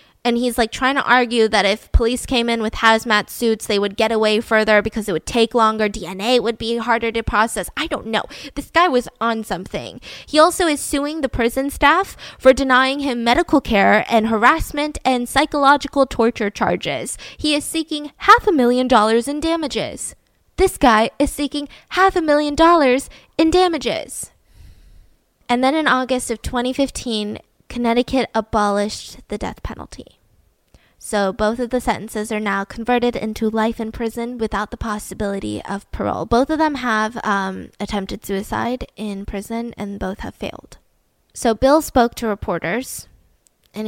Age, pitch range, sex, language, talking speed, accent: 10-29, 215-265 Hz, female, English, 165 wpm, American